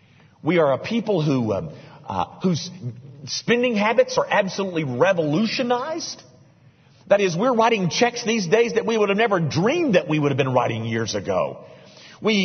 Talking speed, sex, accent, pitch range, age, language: 170 wpm, male, American, 125-200 Hz, 50-69, English